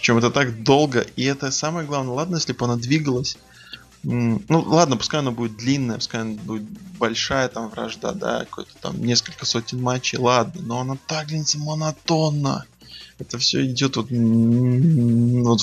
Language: Russian